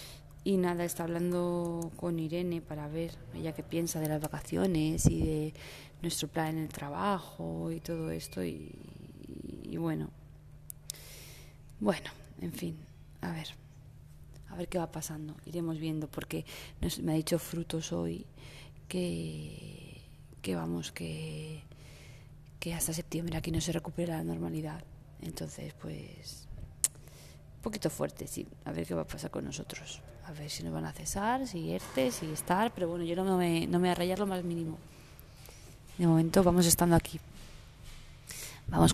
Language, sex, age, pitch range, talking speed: Spanish, female, 20-39, 130-175 Hz, 160 wpm